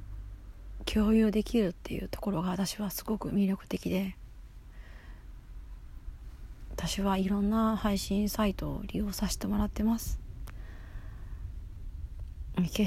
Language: Japanese